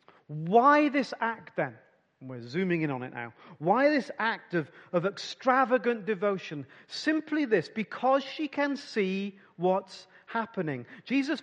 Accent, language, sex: British, English, male